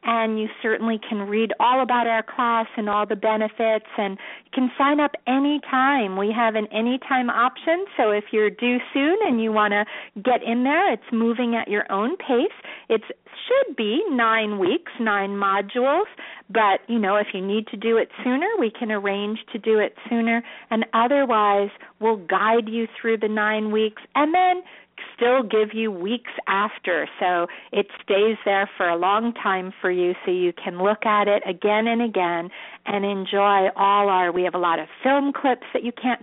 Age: 40-59